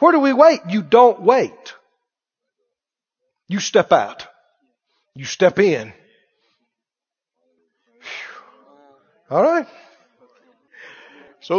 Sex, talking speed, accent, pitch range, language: male, 90 wpm, American, 195-295 Hz, English